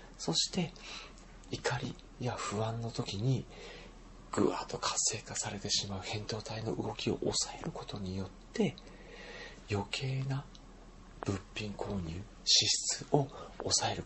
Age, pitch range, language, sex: 40-59, 100-145 Hz, Japanese, male